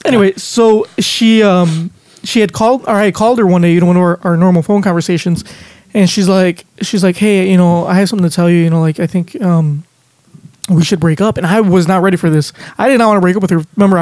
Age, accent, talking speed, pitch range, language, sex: 20-39, American, 270 wpm, 170-200 Hz, English, male